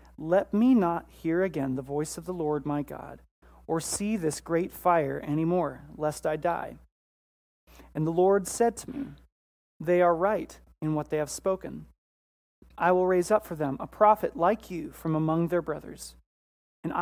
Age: 30-49